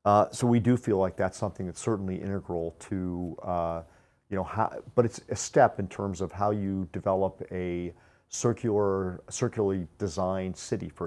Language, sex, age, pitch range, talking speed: English, male, 40-59, 90-115 Hz, 165 wpm